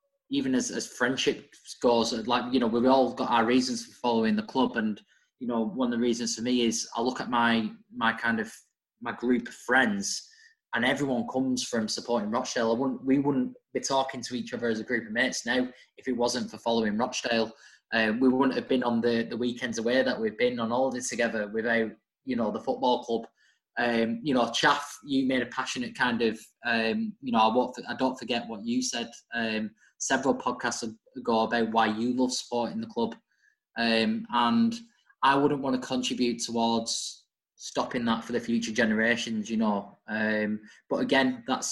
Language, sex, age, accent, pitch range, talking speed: English, male, 20-39, British, 115-135 Hz, 205 wpm